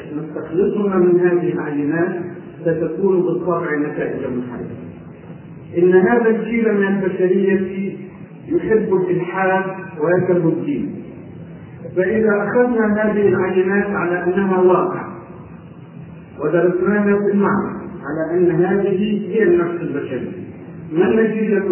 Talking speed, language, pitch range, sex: 95 wpm, Arabic, 170-195 Hz, male